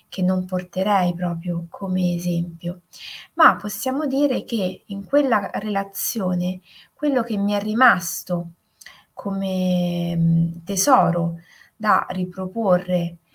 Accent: native